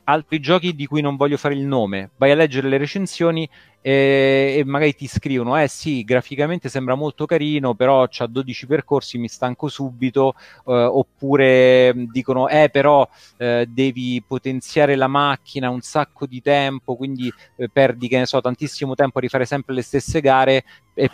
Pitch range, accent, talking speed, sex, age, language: 120-145 Hz, native, 170 wpm, male, 30-49, Italian